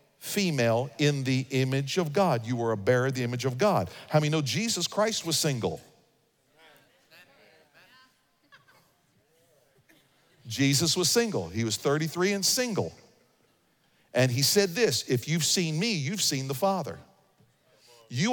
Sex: male